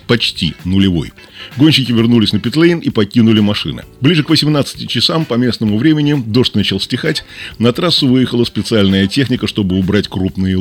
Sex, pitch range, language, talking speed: male, 100-130 Hz, Russian, 155 wpm